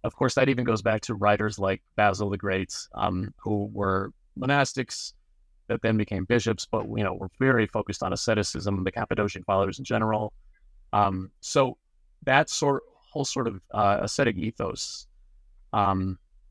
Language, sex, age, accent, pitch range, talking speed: English, male, 30-49, American, 100-130 Hz, 160 wpm